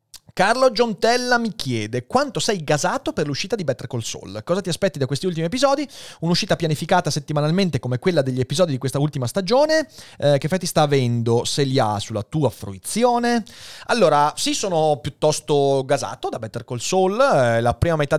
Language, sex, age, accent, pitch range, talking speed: Italian, male, 30-49, native, 120-165 Hz, 180 wpm